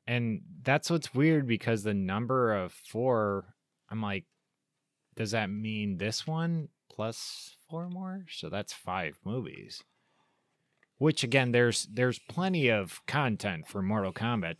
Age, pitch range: 20-39, 100-125 Hz